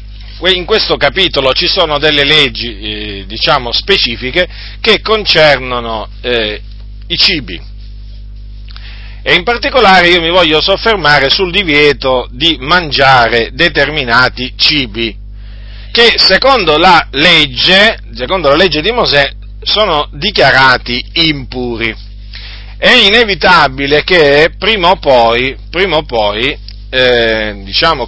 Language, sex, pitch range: Italian, male, 115-175 Hz